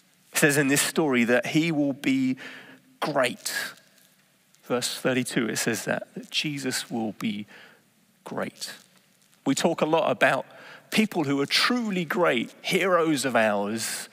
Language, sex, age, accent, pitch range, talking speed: English, male, 30-49, British, 125-170 Hz, 140 wpm